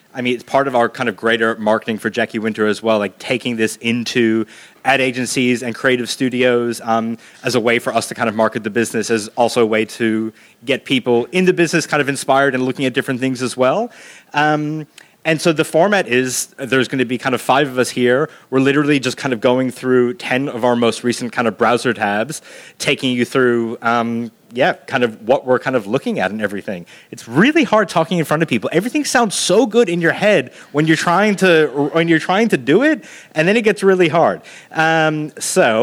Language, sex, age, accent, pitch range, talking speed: English, male, 30-49, American, 120-155 Hz, 230 wpm